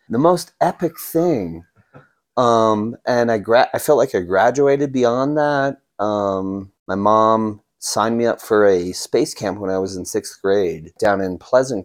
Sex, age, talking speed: male, 30-49, 170 wpm